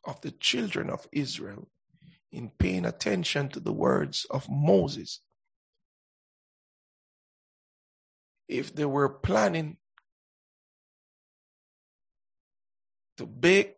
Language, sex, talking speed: English, male, 85 wpm